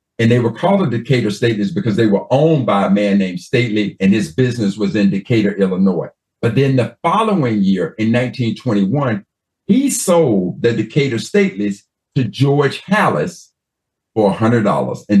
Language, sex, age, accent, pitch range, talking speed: English, male, 50-69, American, 100-135 Hz, 160 wpm